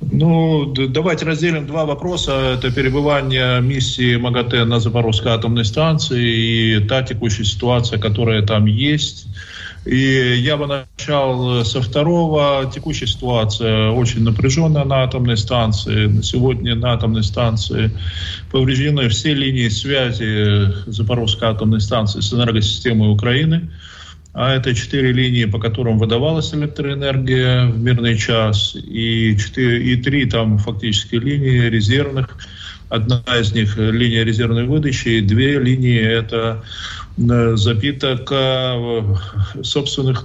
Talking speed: 125 wpm